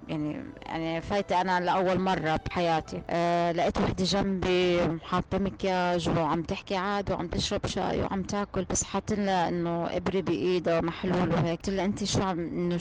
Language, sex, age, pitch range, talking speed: Arabic, female, 20-39, 175-200 Hz, 160 wpm